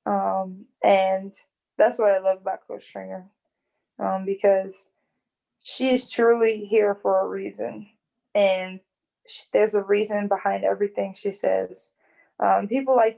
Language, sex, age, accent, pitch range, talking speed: English, female, 20-39, American, 185-215 Hz, 130 wpm